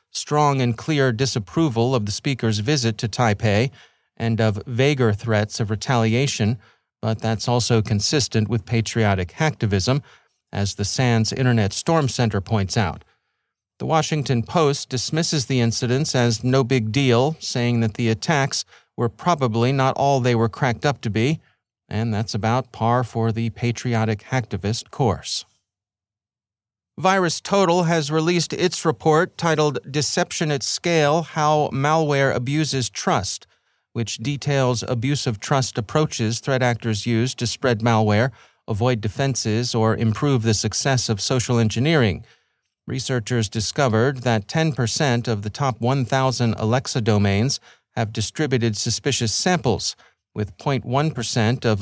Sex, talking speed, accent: male, 135 wpm, American